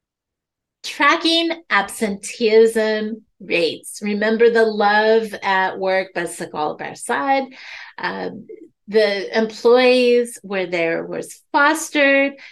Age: 30-49